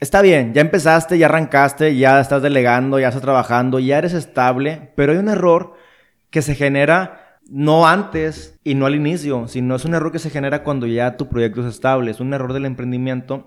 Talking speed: 205 wpm